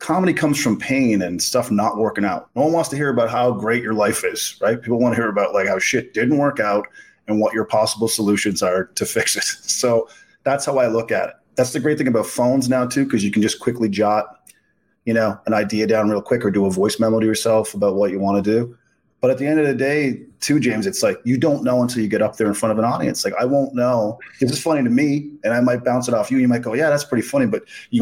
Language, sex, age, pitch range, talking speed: English, male, 30-49, 110-135 Hz, 285 wpm